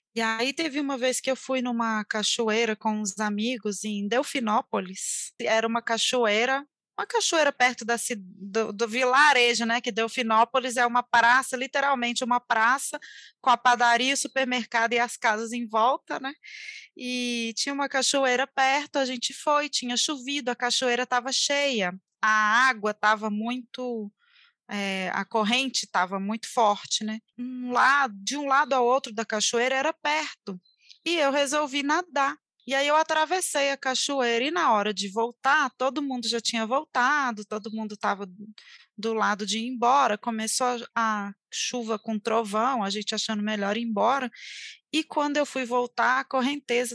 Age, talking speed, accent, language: 20-39, 160 wpm, Brazilian, Portuguese